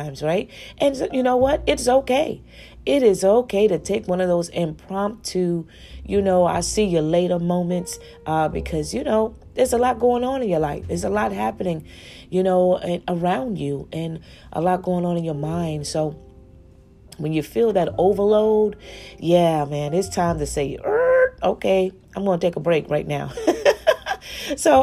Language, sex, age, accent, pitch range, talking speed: English, female, 30-49, American, 155-200 Hz, 175 wpm